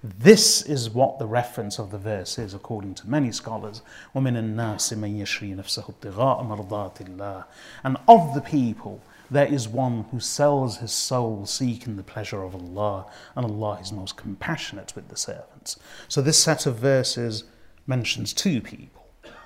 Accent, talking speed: British, 155 wpm